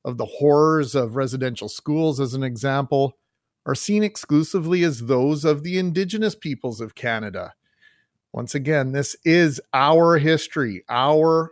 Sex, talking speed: male, 140 wpm